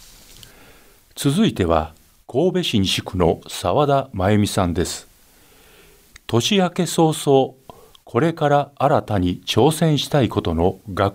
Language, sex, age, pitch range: Japanese, male, 50-69, 90-145 Hz